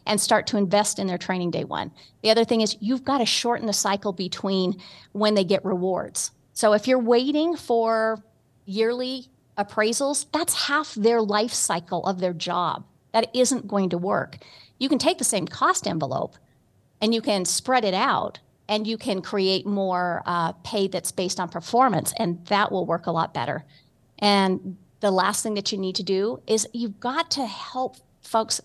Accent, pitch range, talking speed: American, 185-230 Hz, 190 wpm